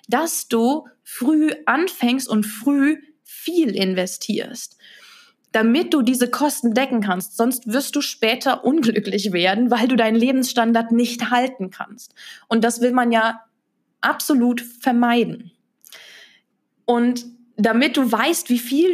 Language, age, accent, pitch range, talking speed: German, 20-39, German, 200-250 Hz, 125 wpm